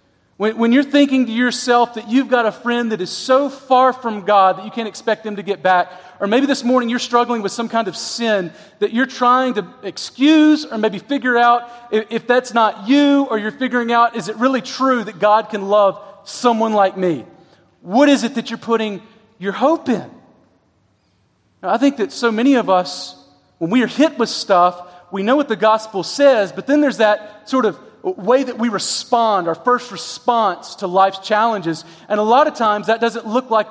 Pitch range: 180-235 Hz